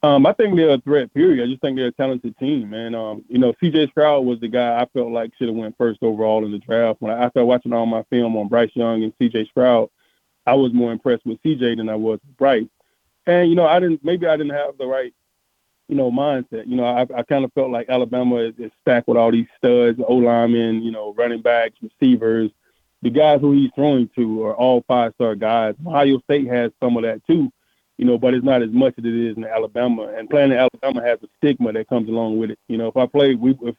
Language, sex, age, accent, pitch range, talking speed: English, male, 20-39, American, 115-135 Hz, 250 wpm